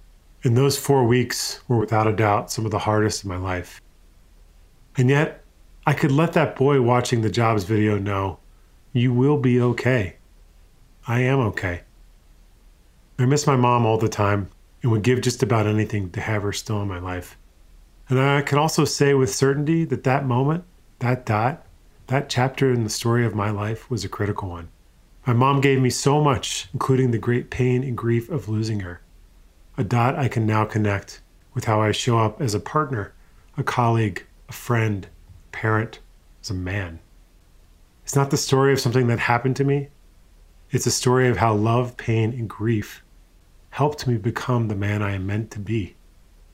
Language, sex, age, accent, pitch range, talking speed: English, male, 40-59, American, 100-130 Hz, 185 wpm